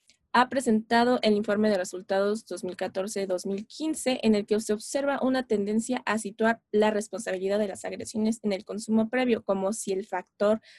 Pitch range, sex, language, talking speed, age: 200-245 Hz, female, Spanish, 160 wpm, 20-39